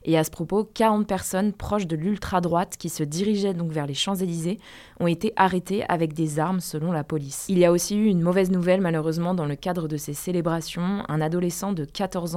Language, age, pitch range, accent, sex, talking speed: French, 20-39, 165-195 Hz, French, female, 220 wpm